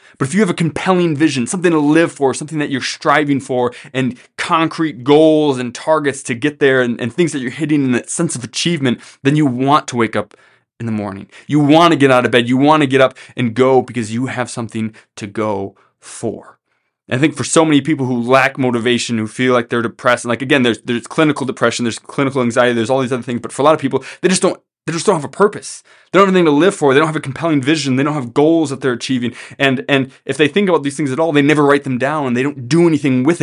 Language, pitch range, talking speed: English, 120-150 Hz, 270 wpm